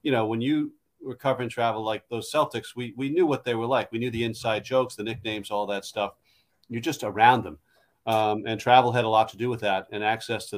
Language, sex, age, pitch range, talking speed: English, male, 40-59, 110-140 Hz, 250 wpm